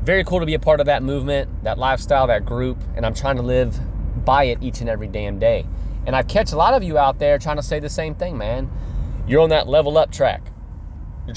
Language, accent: English, American